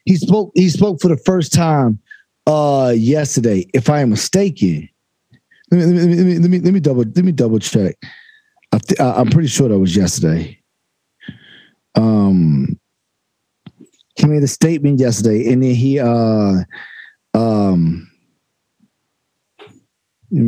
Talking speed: 150 wpm